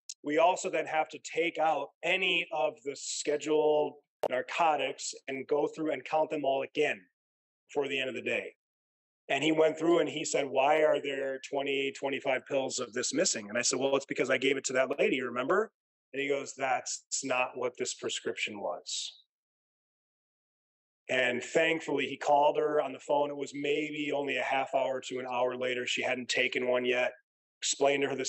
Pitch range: 135-160 Hz